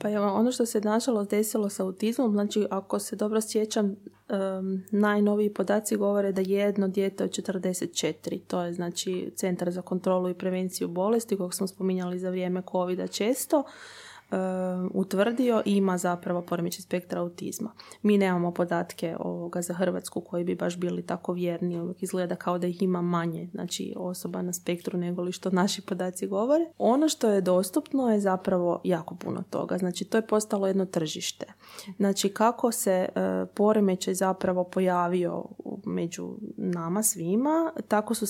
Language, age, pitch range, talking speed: Croatian, 20-39, 185-225 Hz, 160 wpm